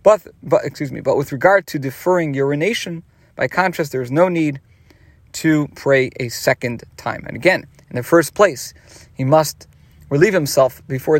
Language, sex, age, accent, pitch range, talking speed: English, male, 40-59, American, 130-175 Hz, 170 wpm